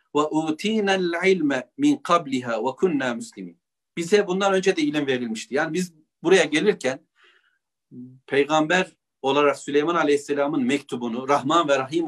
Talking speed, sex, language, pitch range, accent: 90 wpm, male, Turkish, 145-190 Hz, native